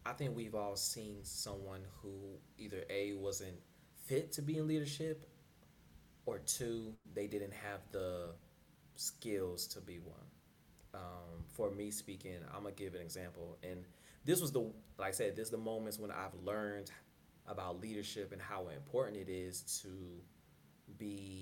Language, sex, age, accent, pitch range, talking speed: English, male, 20-39, American, 90-105 Hz, 160 wpm